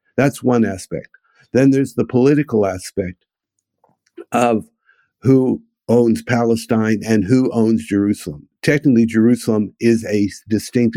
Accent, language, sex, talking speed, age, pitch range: American, English, male, 115 wpm, 50-69, 105-120 Hz